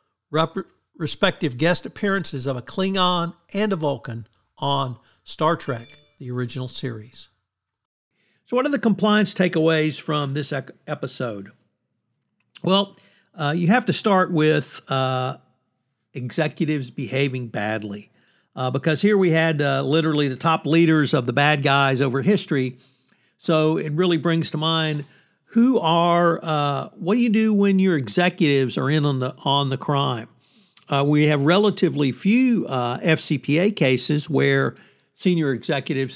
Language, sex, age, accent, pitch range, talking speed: English, male, 60-79, American, 135-175 Hz, 140 wpm